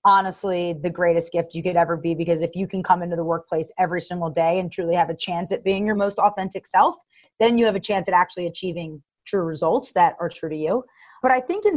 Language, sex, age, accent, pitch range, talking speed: English, female, 30-49, American, 170-205 Hz, 250 wpm